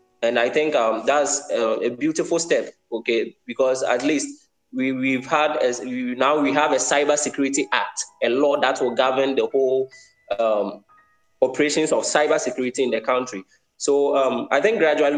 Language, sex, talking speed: English, male, 180 wpm